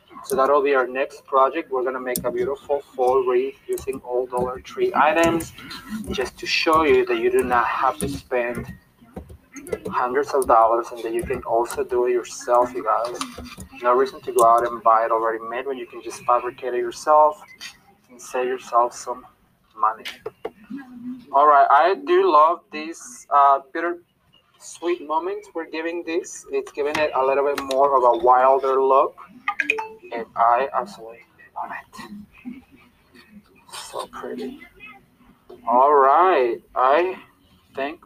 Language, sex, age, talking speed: English, male, 20-39, 160 wpm